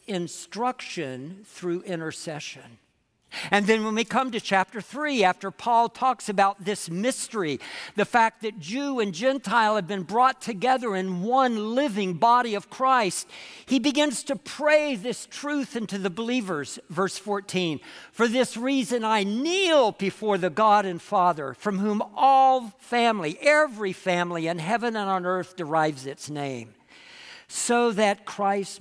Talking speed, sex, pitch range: 150 wpm, male, 170-240 Hz